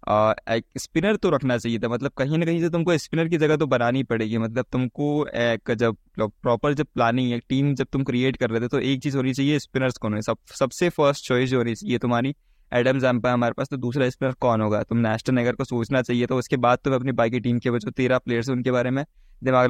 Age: 20-39